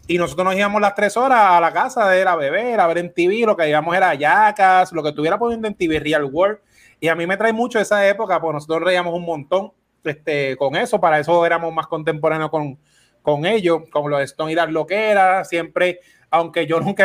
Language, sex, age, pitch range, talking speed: Spanish, male, 20-39, 155-180 Hz, 240 wpm